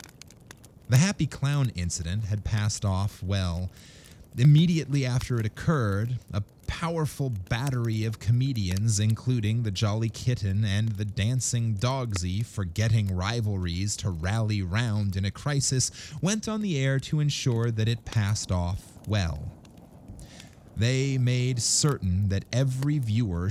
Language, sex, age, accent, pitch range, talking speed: English, male, 30-49, American, 100-135 Hz, 130 wpm